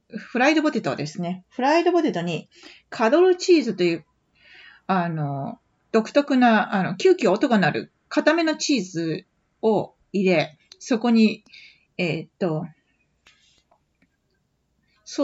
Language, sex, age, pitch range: Japanese, female, 40-59, 180-240 Hz